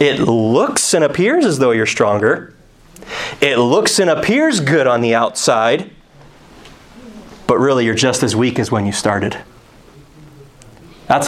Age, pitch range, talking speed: 30-49, 135-195 Hz, 145 wpm